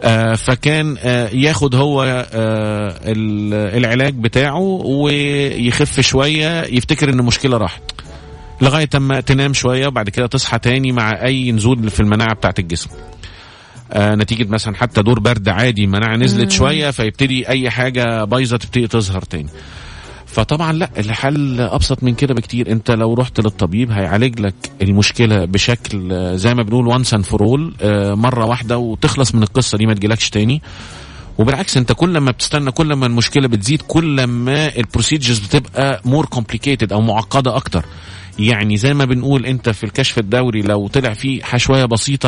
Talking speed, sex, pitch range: 145 wpm, male, 110-135 Hz